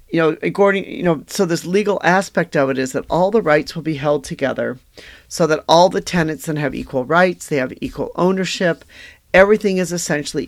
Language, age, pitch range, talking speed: English, 40-59, 140-180 Hz, 205 wpm